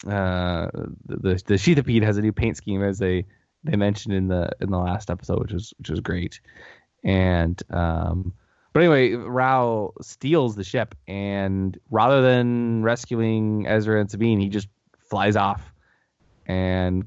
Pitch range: 95-115 Hz